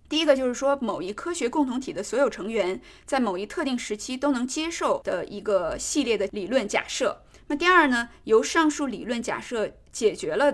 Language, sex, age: Chinese, female, 20-39